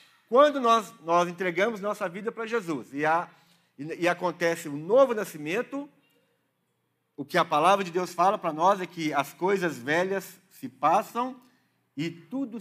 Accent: Brazilian